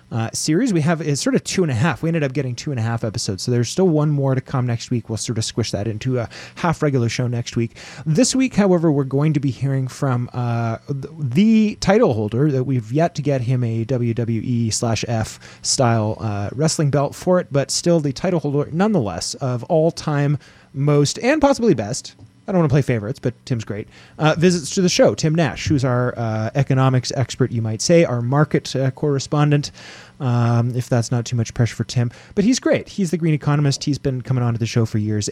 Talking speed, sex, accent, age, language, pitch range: 235 wpm, male, American, 20-39, English, 115-155 Hz